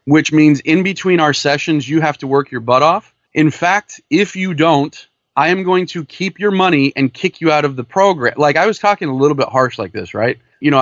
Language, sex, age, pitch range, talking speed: English, male, 30-49, 130-165 Hz, 250 wpm